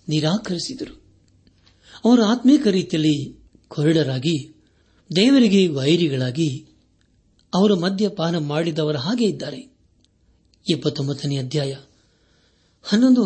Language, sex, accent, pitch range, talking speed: Kannada, male, native, 135-170 Hz, 70 wpm